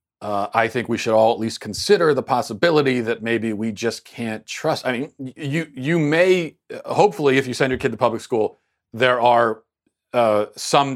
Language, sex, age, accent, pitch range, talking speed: English, male, 40-59, American, 115-145 Hz, 190 wpm